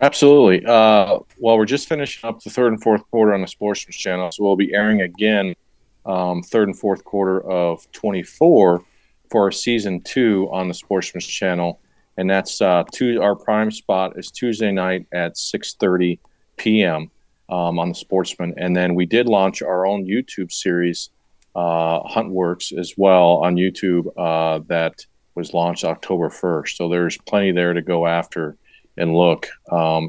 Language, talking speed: English, 165 wpm